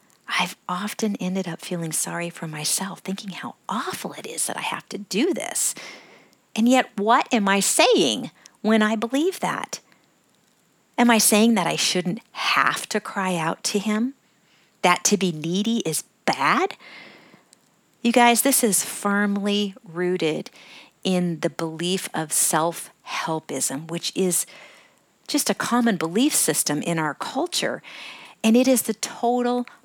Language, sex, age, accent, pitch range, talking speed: English, female, 50-69, American, 165-220 Hz, 145 wpm